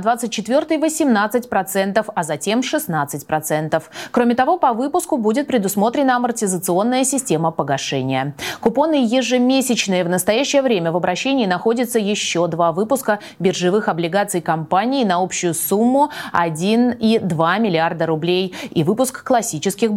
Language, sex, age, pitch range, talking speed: Russian, female, 30-49, 180-255 Hz, 115 wpm